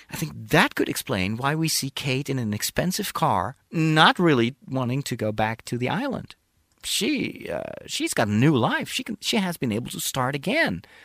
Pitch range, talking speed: 120-185 Hz, 210 wpm